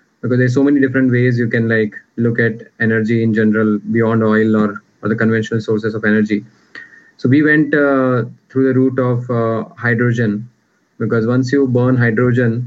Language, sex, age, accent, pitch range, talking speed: English, male, 20-39, Indian, 115-125 Hz, 180 wpm